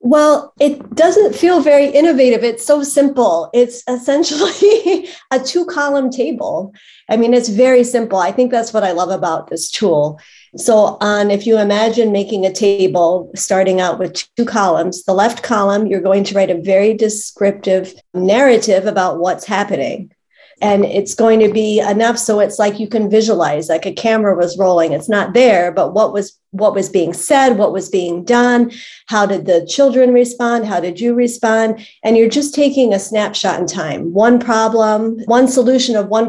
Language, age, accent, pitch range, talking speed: English, 40-59, American, 190-240 Hz, 180 wpm